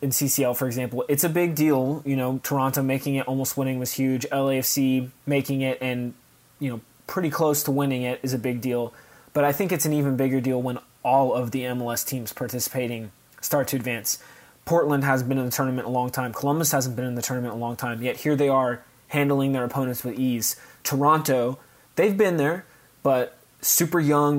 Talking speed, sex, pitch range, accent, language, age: 205 wpm, male, 125-145 Hz, American, English, 20-39